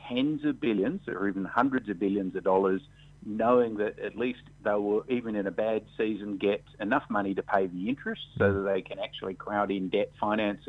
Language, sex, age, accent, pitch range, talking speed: English, male, 50-69, Australian, 110-145 Hz, 210 wpm